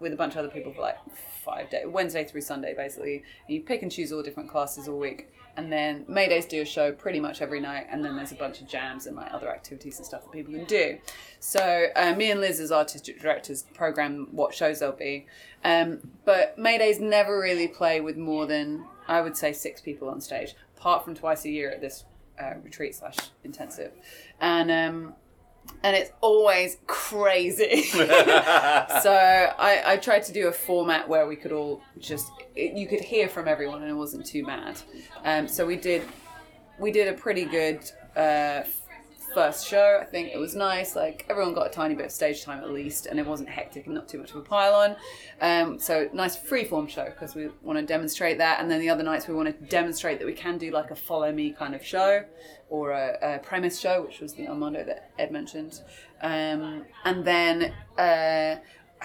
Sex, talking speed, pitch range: female, 205 wpm, 150-195 Hz